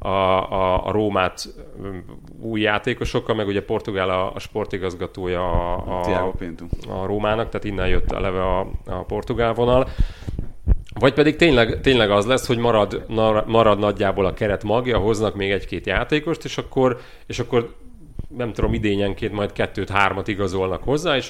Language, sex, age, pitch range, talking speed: Hungarian, male, 30-49, 95-115 Hz, 150 wpm